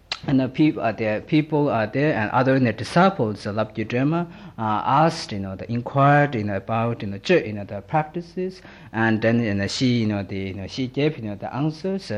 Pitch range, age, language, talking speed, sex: 105-135 Hz, 50-69, Italian, 185 wpm, male